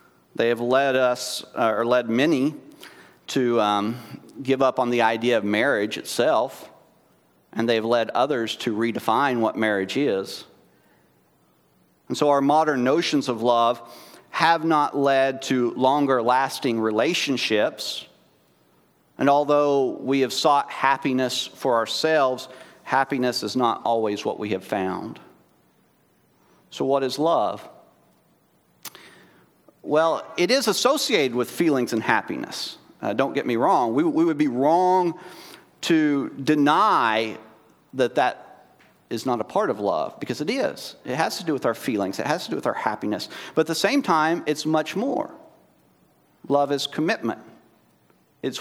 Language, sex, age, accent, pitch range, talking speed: English, male, 40-59, American, 115-145 Hz, 145 wpm